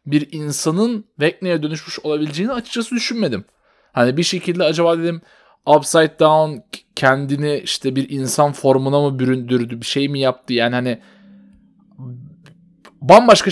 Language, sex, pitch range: Turkish, male, 130-185 Hz